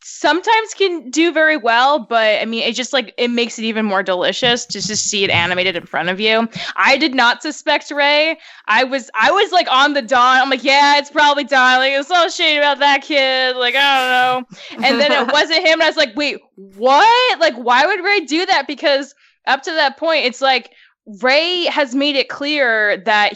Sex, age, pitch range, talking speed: female, 10-29, 220-300 Hz, 220 wpm